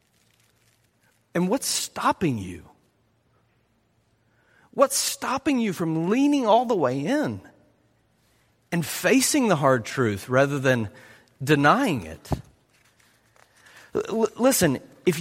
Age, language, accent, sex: 40-59, English, American, male